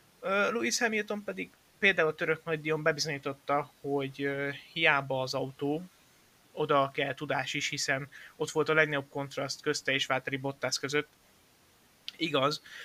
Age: 20-39